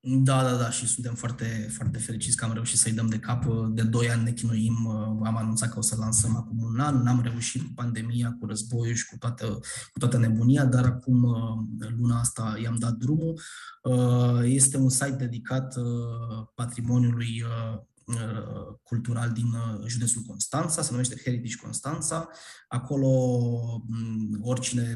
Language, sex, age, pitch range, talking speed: Romanian, male, 20-39, 115-125 Hz, 150 wpm